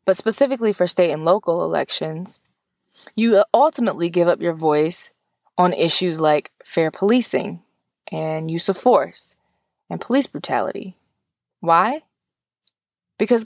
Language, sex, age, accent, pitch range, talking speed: English, female, 20-39, American, 170-230 Hz, 120 wpm